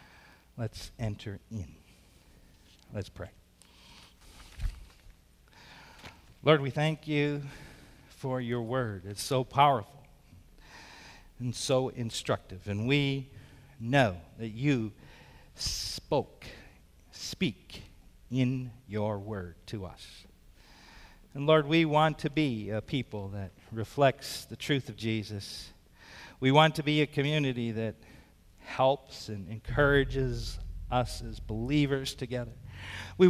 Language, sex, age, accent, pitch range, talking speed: English, male, 50-69, American, 100-140 Hz, 105 wpm